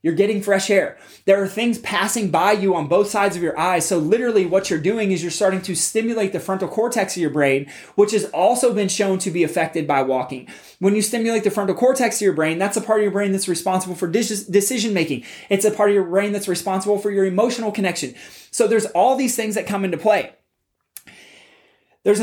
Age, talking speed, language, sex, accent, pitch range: 20-39, 225 wpm, English, male, American, 170-210 Hz